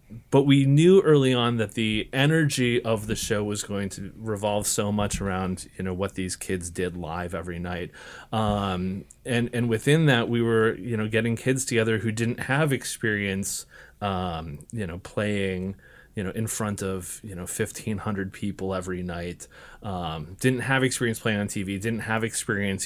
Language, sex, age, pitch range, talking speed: English, male, 30-49, 95-120 Hz, 180 wpm